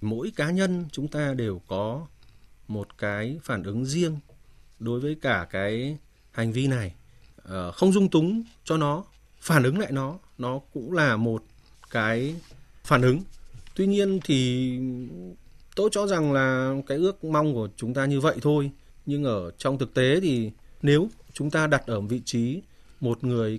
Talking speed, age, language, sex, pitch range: 170 wpm, 20-39, Vietnamese, male, 115-160 Hz